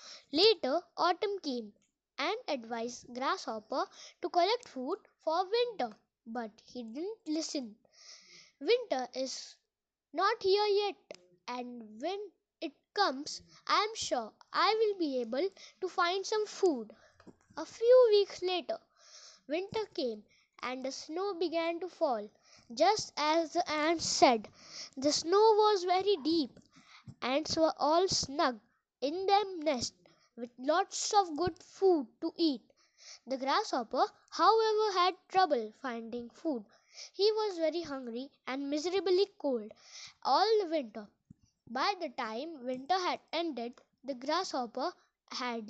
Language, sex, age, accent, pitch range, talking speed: Telugu, female, 20-39, native, 255-370 Hz, 125 wpm